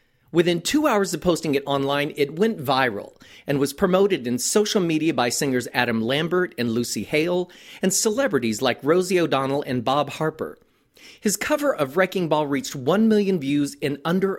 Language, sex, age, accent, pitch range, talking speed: English, male, 40-59, American, 130-195 Hz, 175 wpm